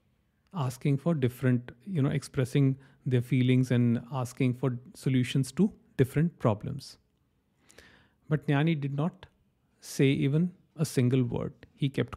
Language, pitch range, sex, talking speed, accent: English, 125-160 Hz, male, 130 wpm, Indian